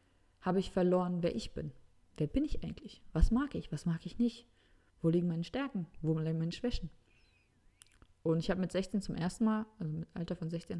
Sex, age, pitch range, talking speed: female, 20-39, 150-205 Hz, 210 wpm